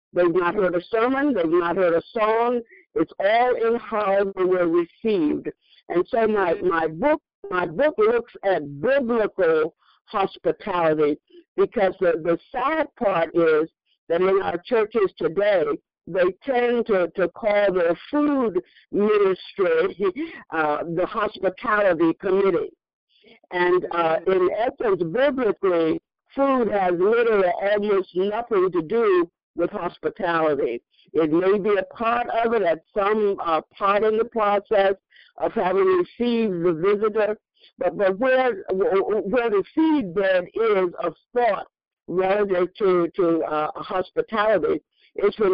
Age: 60-79